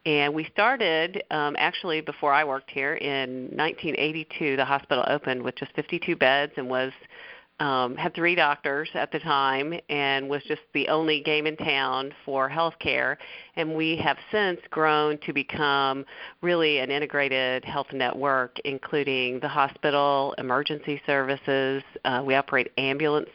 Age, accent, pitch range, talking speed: 40-59, American, 135-155 Hz, 150 wpm